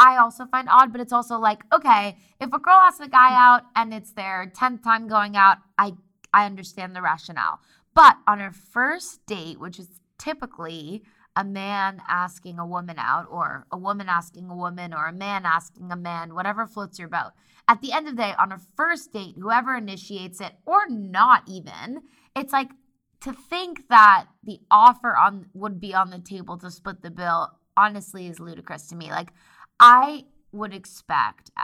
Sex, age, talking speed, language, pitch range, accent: female, 20-39, 190 wpm, English, 180-240 Hz, American